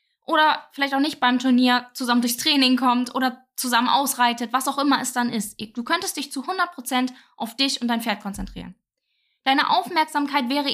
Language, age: German, 10-29